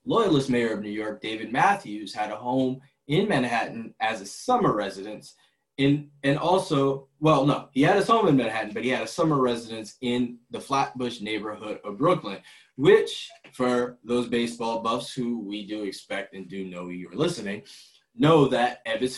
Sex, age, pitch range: male, 20-39, 110-140 Hz